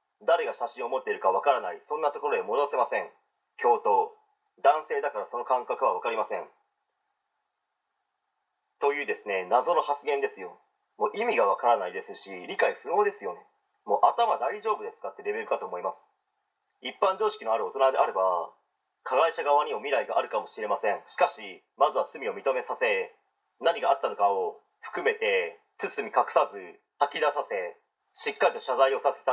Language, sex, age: Japanese, male, 30-49